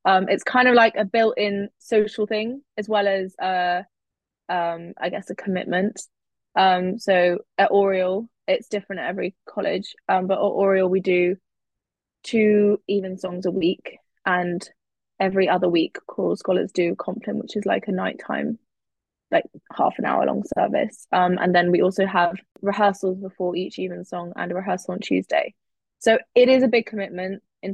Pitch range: 185-205 Hz